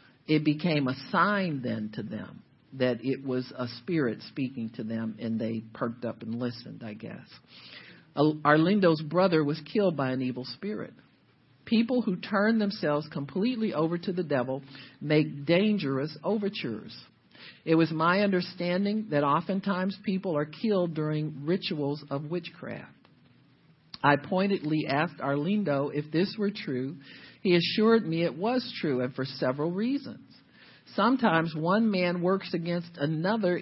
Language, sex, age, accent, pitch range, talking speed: English, male, 50-69, American, 145-195 Hz, 145 wpm